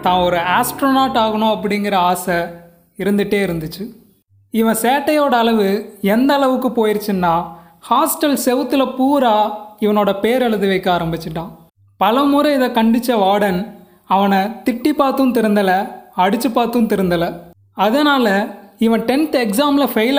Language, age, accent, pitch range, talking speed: Tamil, 20-39, native, 190-250 Hz, 115 wpm